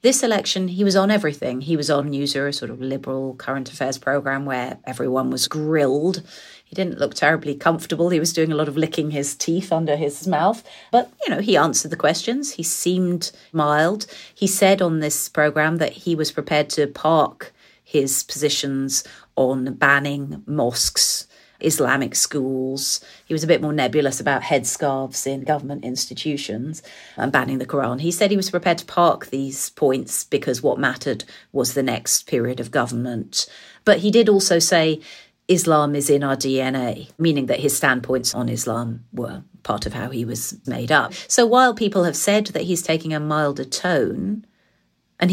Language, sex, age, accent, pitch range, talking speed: English, female, 40-59, British, 135-180 Hz, 180 wpm